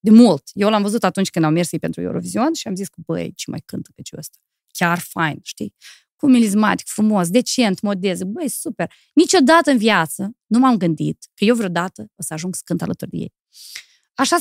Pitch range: 180-265 Hz